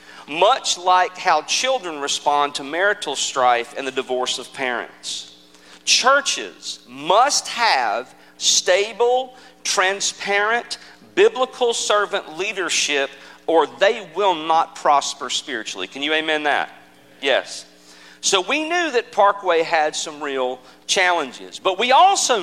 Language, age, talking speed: English, 40-59, 120 wpm